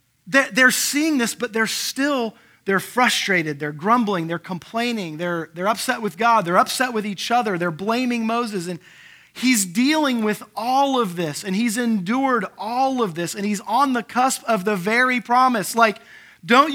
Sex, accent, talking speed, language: male, American, 175 wpm, English